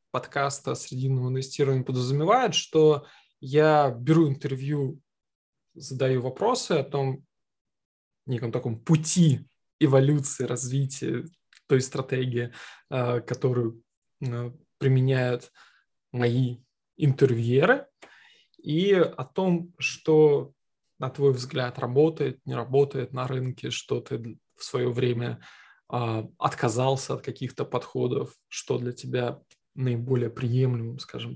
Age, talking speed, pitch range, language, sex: 20-39, 100 wpm, 125-150 Hz, Russian, male